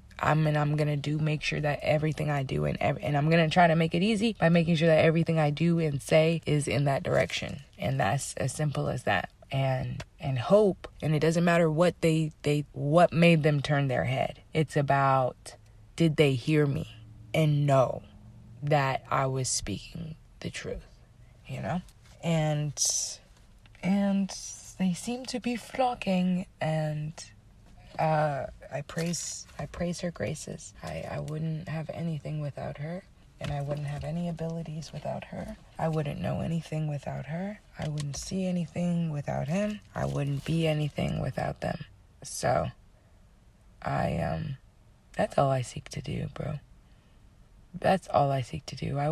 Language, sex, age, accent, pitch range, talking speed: English, female, 20-39, American, 135-165 Hz, 165 wpm